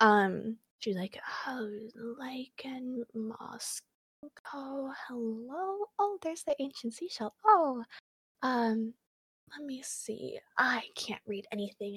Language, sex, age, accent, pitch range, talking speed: English, female, 20-39, American, 205-290 Hz, 110 wpm